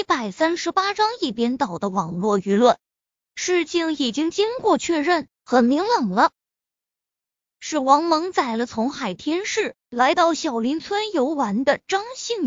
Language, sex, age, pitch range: Chinese, female, 20-39, 250-360 Hz